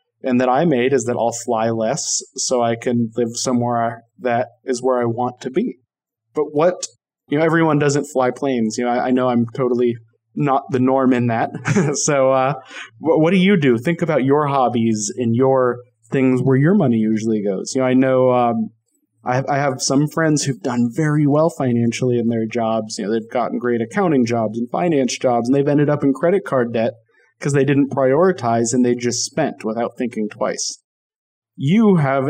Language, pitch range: English, 120-150 Hz